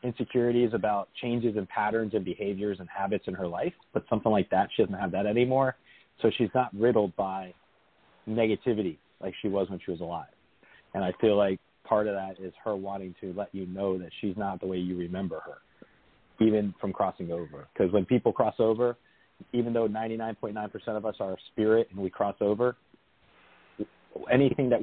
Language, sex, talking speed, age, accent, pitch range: English, male, 190 wpm, 40-59, American, 95-110 Hz